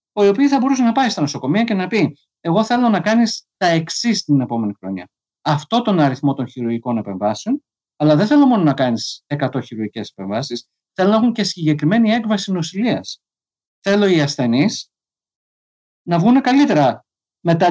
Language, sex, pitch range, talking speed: Greek, male, 130-200 Hz, 165 wpm